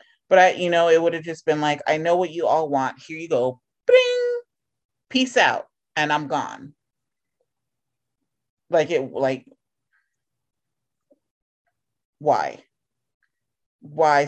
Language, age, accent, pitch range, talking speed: English, 30-49, American, 125-155 Hz, 125 wpm